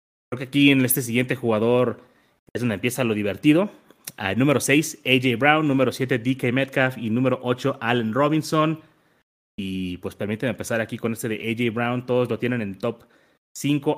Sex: male